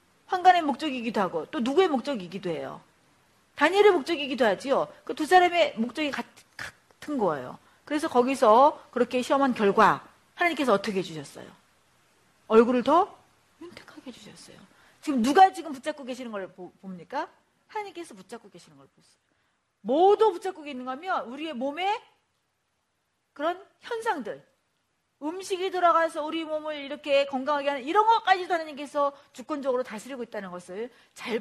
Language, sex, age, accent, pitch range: Korean, female, 40-59, native, 230-335 Hz